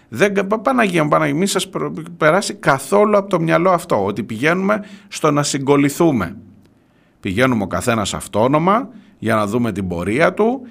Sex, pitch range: male, 110-180 Hz